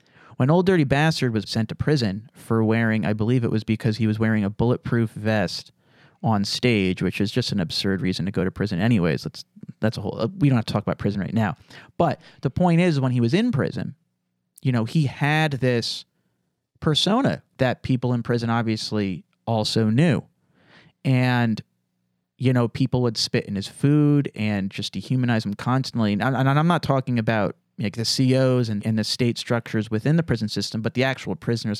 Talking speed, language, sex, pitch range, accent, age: 195 wpm, English, male, 105-130 Hz, American, 30-49